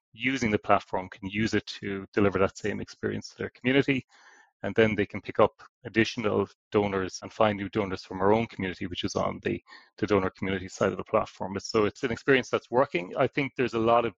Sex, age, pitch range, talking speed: male, 30-49, 95-110 Hz, 225 wpm